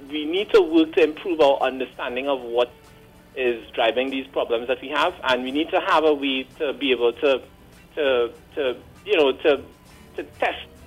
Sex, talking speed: male, 195 wpm